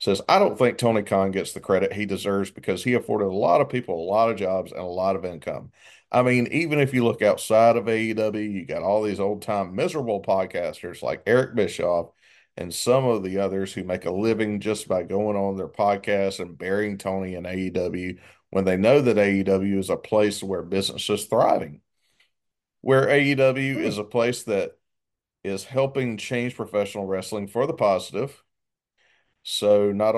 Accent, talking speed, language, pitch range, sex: American, 185 wpm, English, 95-115 Hz, male